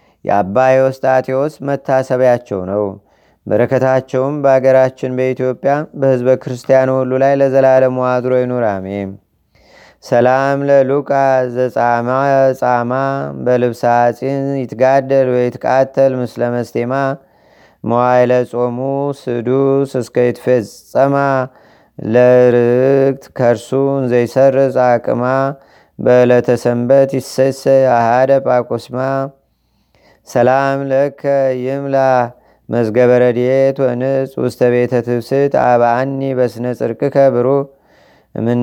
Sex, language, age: male, Amharic, 30-49